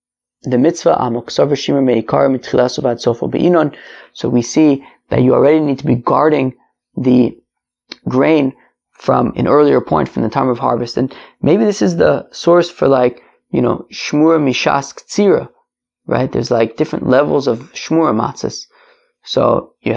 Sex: male